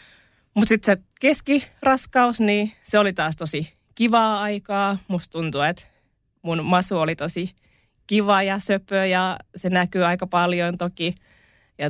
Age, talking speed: 20-39, 140 wpm